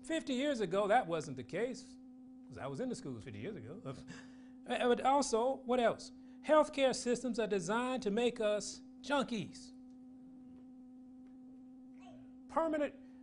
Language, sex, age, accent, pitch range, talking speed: English, male, 40-59, American, 185-255 Hz, 130 wpm